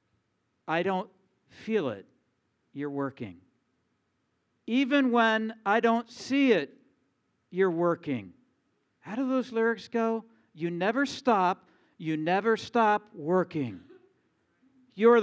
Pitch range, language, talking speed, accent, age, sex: 155-225 Hz, English, 105 wpm, American, 50-69, male